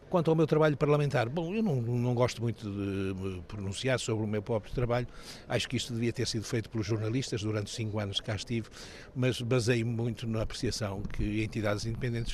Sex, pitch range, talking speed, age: male, 105-120 Hz, 205 wpm, 60-79